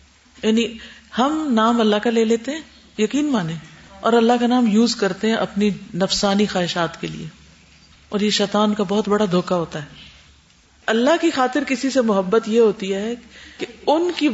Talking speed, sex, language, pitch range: 180 wpm, female, Urdu, 205-275 Hz